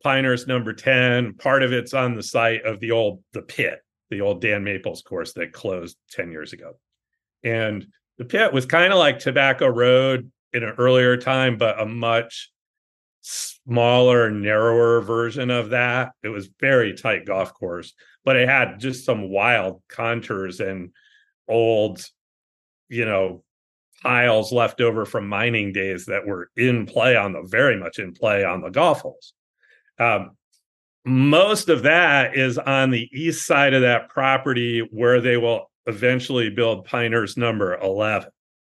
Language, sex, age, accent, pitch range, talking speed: English, male, 40-59, American, 110-130 Hz, 155 wpm